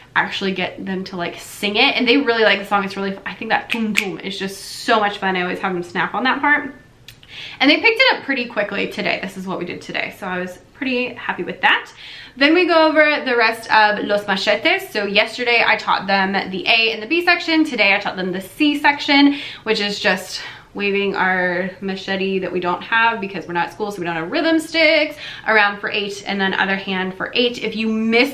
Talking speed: 235 wpm